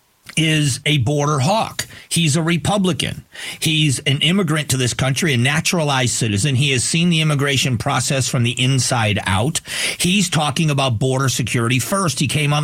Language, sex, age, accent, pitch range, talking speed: English, male, 50-69, American, 130-170 Hz, 165 wpm